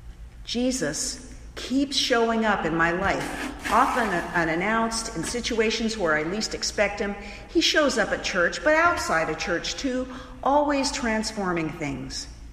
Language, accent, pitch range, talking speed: English, American, 165-245 Hz, 140 wpm